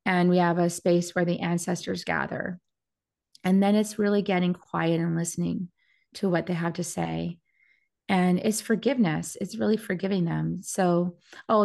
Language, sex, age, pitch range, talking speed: English, female, 30-49, 170-200 Hz, 165 wpm